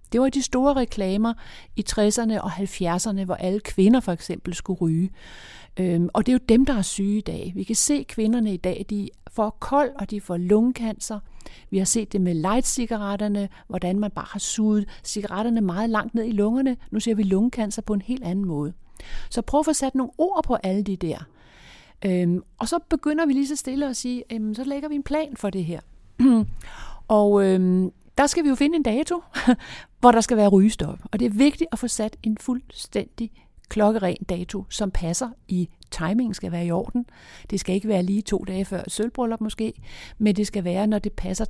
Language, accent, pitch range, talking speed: Danish, native, 190-245 Hz, 215 wpm